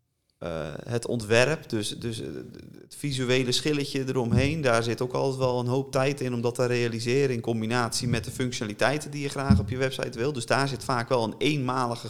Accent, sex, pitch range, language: Dutch, male, 110-130 Hz, Dutch